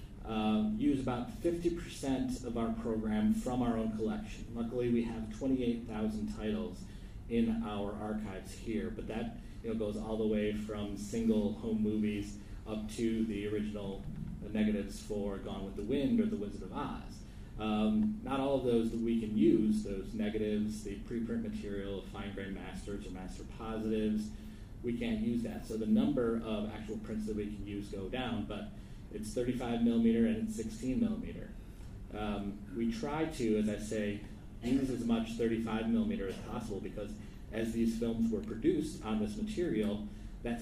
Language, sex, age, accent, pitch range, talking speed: English, male, 30-49, American, 105-115 Hz, 170 wpm